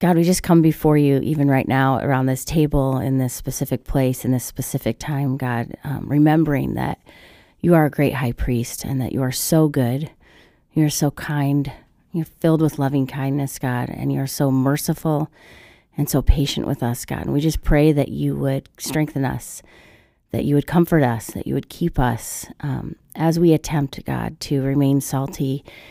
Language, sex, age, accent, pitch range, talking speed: English, female, 30-49, American, 135-155 Hz, 190 wpm